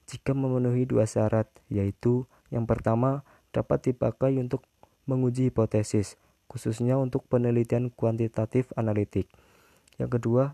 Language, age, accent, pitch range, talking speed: Indonesian, 20-39, native, 105-120 Hz, 110 wpm